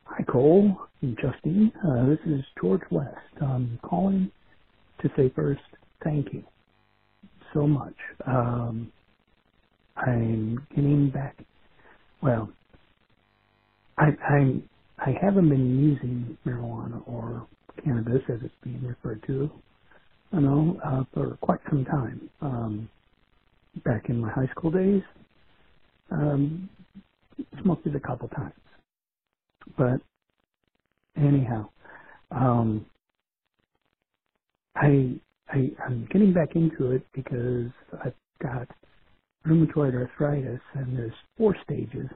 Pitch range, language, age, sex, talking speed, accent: 120-150 Hz, English, 60-79, male, 110 wpm, American